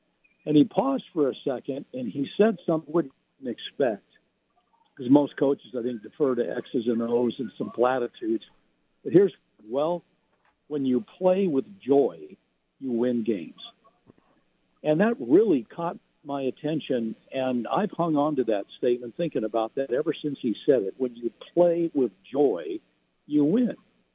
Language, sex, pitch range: English, male, 125-200 Hz